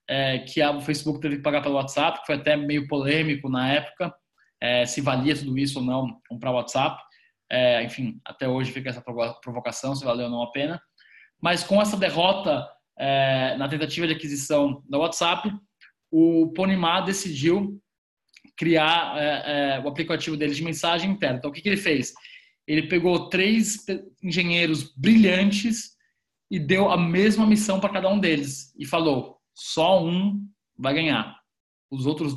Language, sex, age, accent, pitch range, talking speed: Portuguese, male, 20-39, Brazilian, 145-190 Hz, 170 wpm